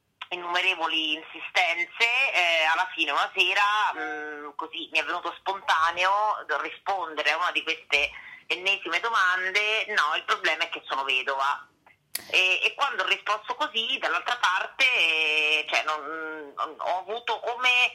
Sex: female